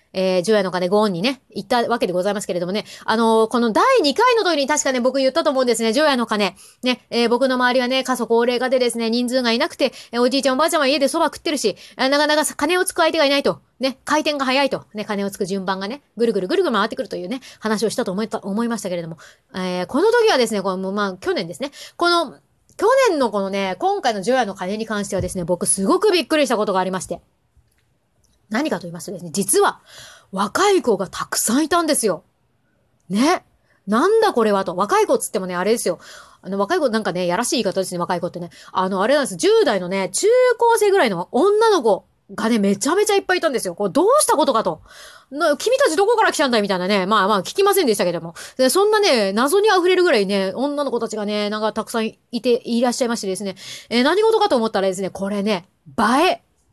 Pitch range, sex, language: 200-300 Hz, female, Japanese